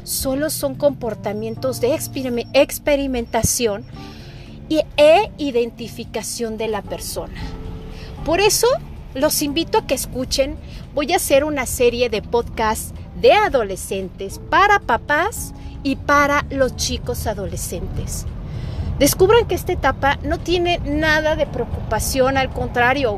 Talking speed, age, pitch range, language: 115 wpm, 40-59, 245-330 Hz, Spanish